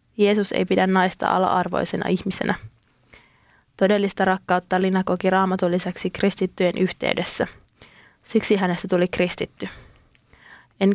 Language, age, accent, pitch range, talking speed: Finnish, 20-39, native, 185-200 Hz, 105 wpm